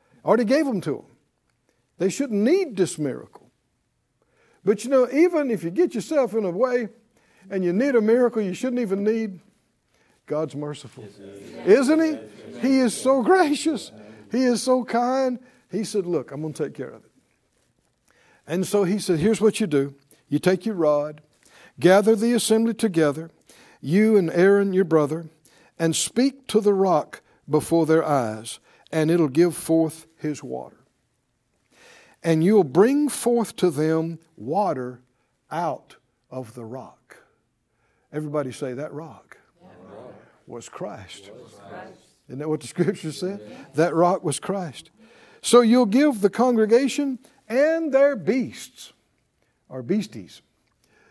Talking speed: 145 wpm